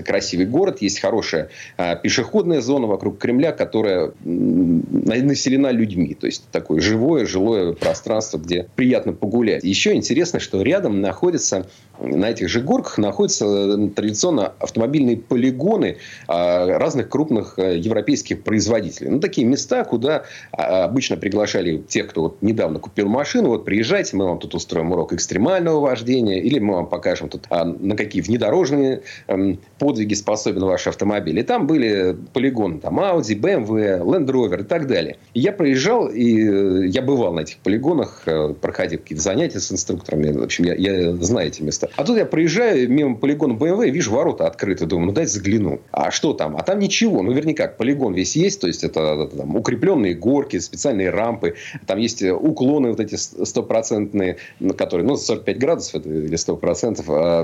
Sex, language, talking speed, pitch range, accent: male, Russian, 165 wpm, 90-140 Hz, native